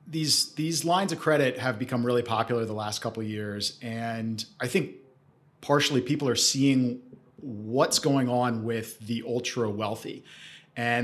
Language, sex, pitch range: English, male, 115-135 Hz